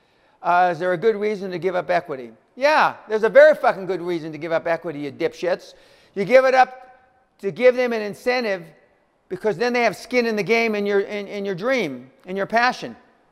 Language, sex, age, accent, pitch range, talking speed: English, male, 50-69, American, 155-215 Hz, 210 wpm